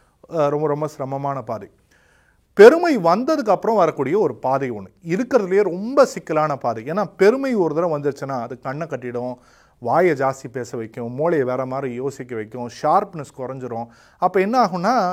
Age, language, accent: 30-49, Tamil, native